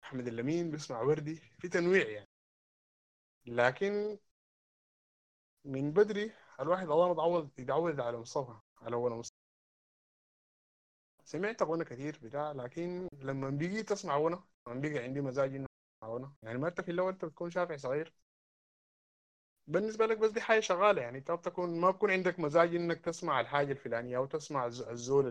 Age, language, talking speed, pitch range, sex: 20-39, Arabic, 150 wpm, 120-170 Hz, male